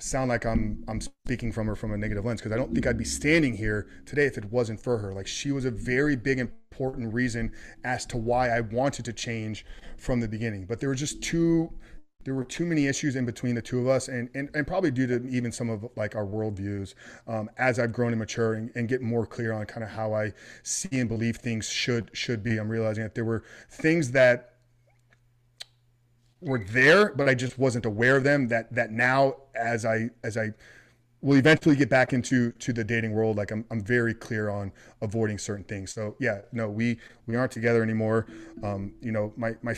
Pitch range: 110-130 Hz